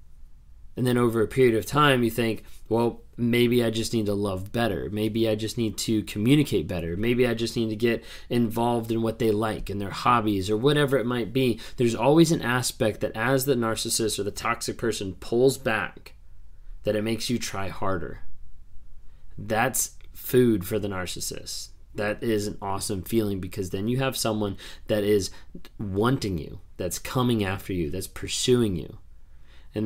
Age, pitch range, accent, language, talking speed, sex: 20-39, 95-115 Hz, American, English, 180 wpm, male